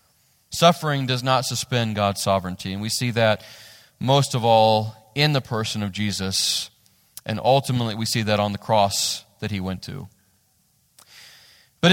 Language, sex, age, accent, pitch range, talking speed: English, male, 40-59, American, 130-195 Hz, 155 wpm